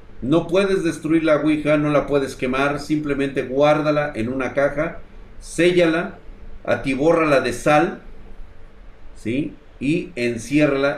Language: Spanish